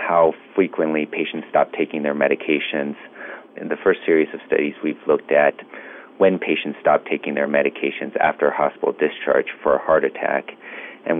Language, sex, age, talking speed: English, male, 40-59, 160 wpm